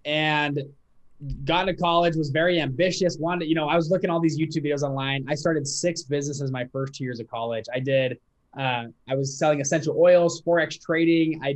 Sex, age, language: male, 20-39, English